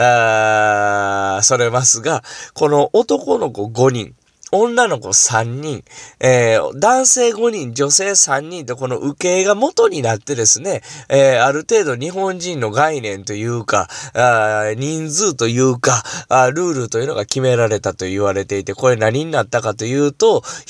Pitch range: 115-190 Hz